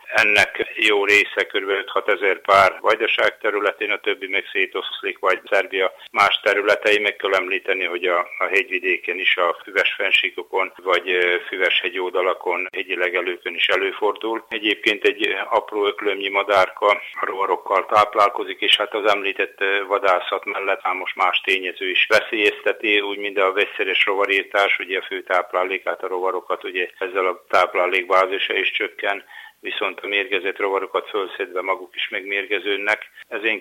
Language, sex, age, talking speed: Hungarian, male, 60-79, 145 wpm